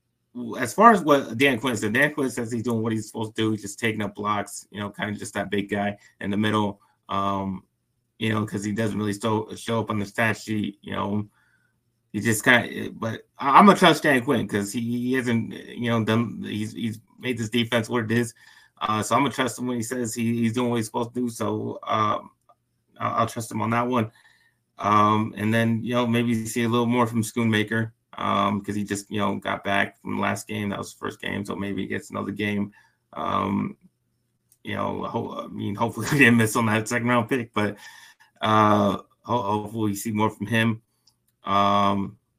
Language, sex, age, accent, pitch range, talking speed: English, male, 30-49, American, 105-120 Hz, 230 wpm